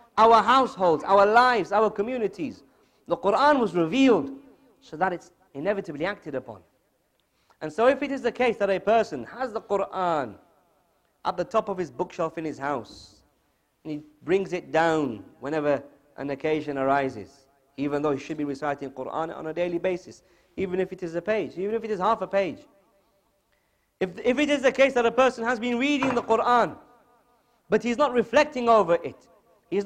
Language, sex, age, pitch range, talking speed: English, male, 40-59, 155-235 Hz, 185 wpm